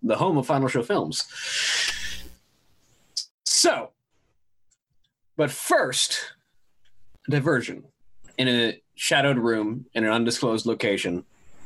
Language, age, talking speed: English, 20-39, 95 wpm